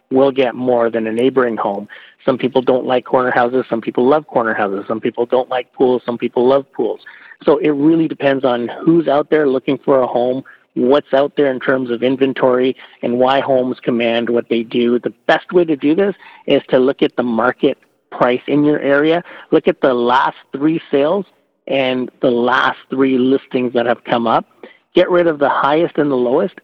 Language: English